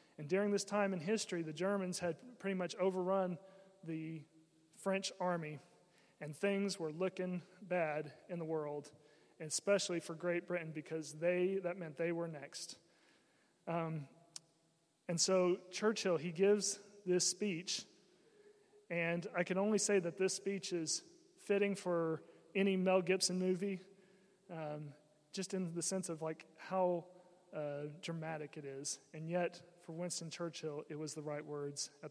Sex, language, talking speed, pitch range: male, English, 150 wpm, 160-195 Hz